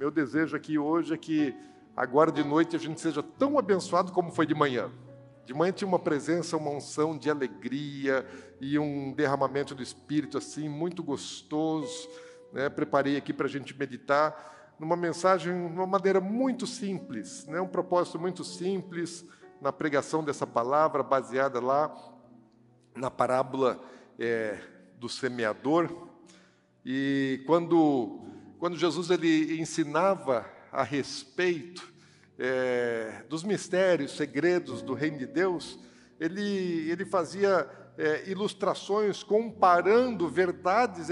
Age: 50-69